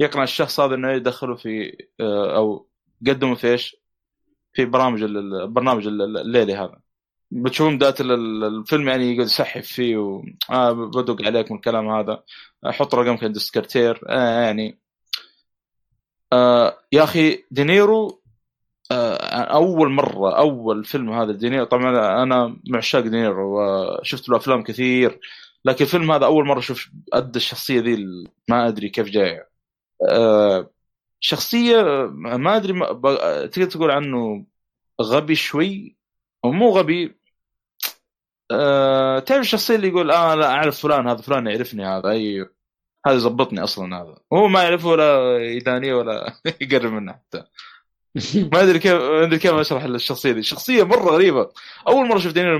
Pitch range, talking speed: 115-155 Hz, 135 wpm